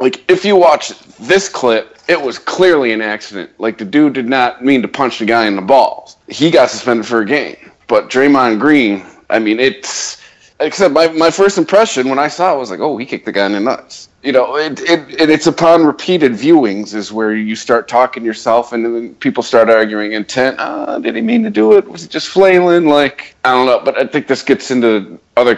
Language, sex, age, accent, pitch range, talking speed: English, male, 30-49, American, 105-140 Hz, 230 wpm